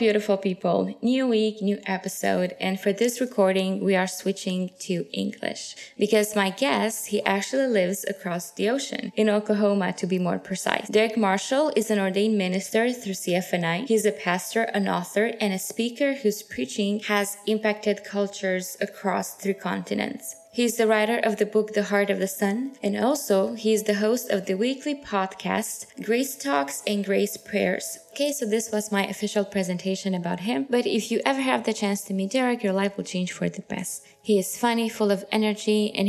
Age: 20-39